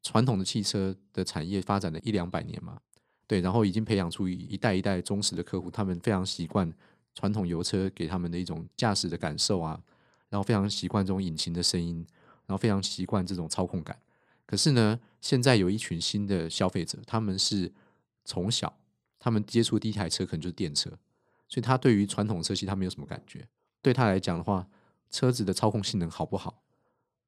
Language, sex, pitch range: Chinese, male, 90-110 Hz